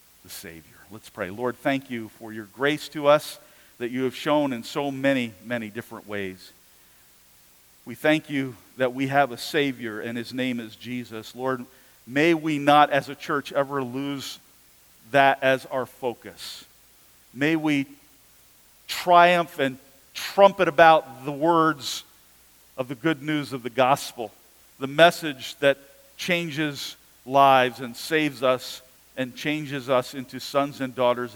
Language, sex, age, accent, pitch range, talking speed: English, male, 50-69, American, 115-145 Hz, 150 wpm